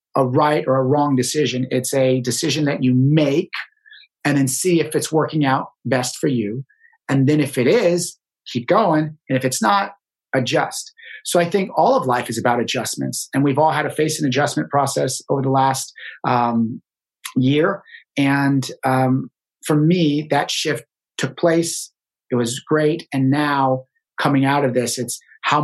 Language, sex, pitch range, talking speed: English, male, 130-165 Hz, 180 wpm